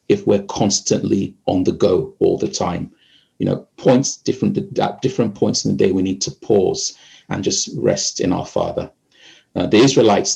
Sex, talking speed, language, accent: male, 180 wpm, English, British